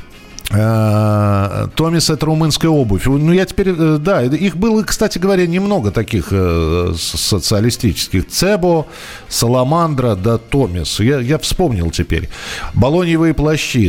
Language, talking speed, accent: Russian, 120 wpm, native